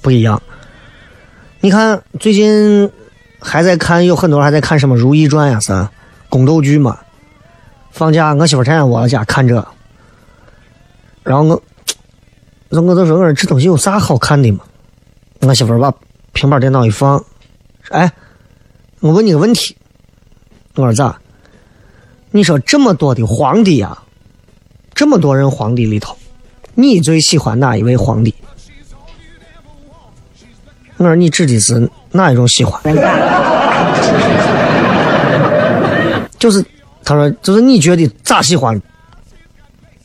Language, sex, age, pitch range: Chinese, male, 30-49, 115-170 Hz